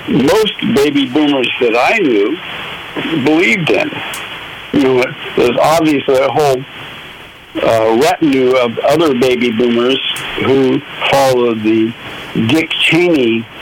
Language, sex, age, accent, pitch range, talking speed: English, male, 60-79, American, 130-165 Hz, 110 wpm